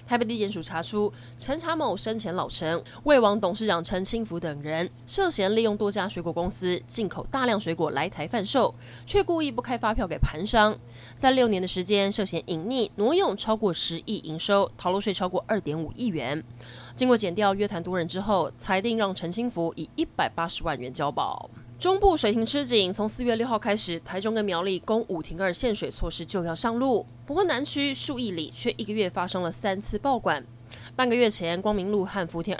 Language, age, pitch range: Chinese, 20-39, 170-235 Hz